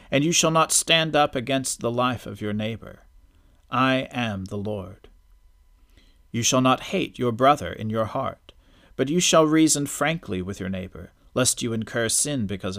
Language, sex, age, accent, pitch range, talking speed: English, male, 40-59, American, 95-135 Hz, 180 wpm